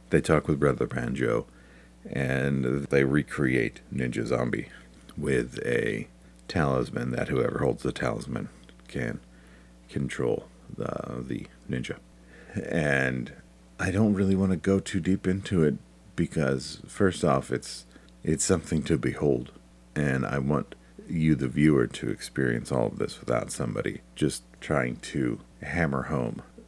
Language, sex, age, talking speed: English, male, 50-69, 135 wpm